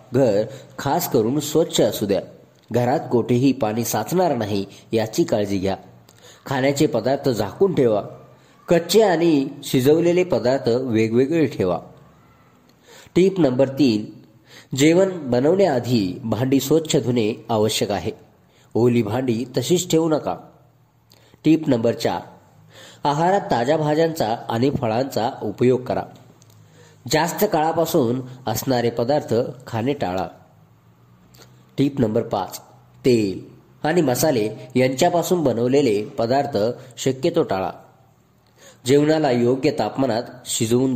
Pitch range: 115-150 Hz